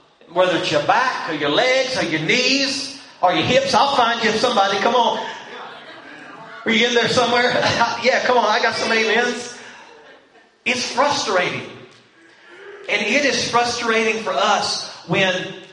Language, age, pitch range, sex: English, 40-59, 150-225 Hz, male